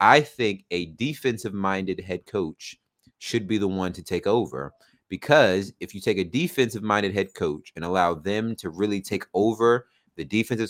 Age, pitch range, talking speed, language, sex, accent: 30-49, 100-125 Hz, 170 wpm, English, male, American